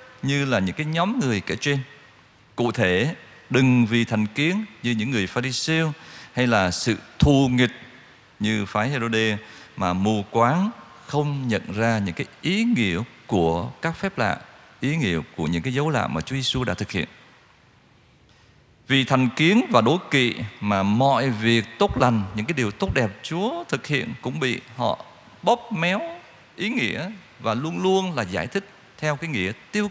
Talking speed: 180 wpm